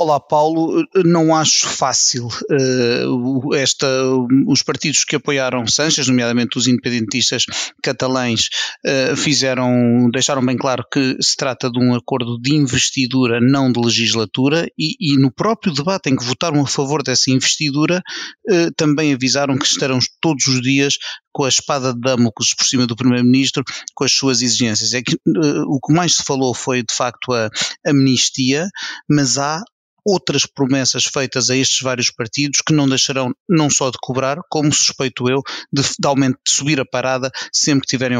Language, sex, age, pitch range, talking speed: Portuguese, male, 30-49, 125-145 Hz, 170 wpm